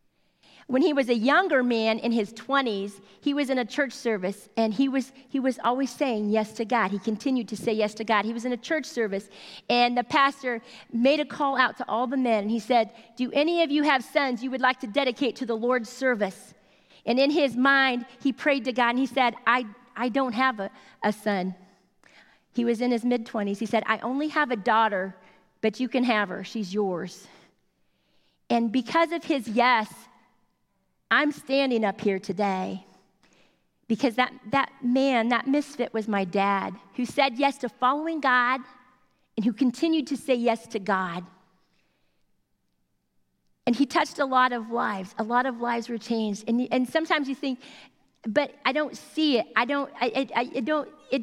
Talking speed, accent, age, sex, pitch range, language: 195 wpm, American, 40-59, female, 220-270 Hz, English